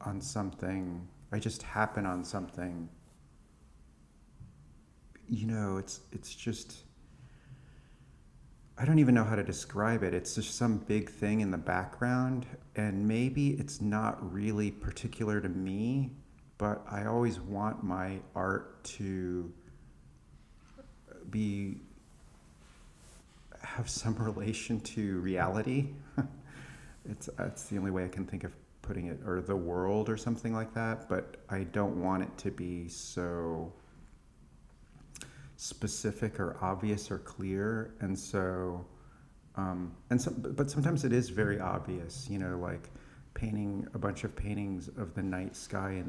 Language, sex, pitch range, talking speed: English, male, 90-115 Hz, 135 wpm